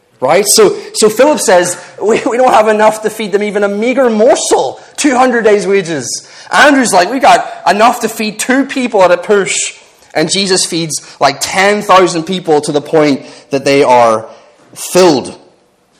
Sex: male